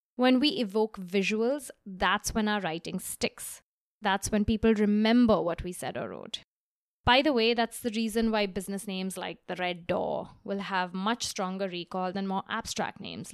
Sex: female